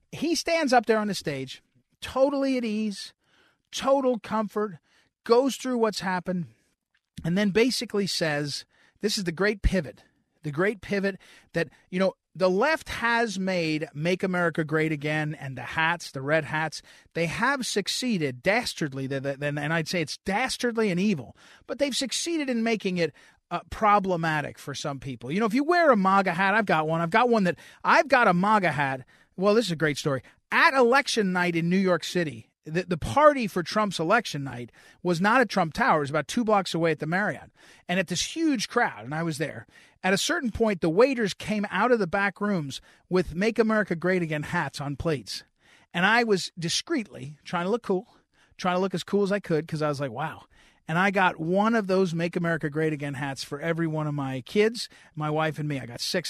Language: English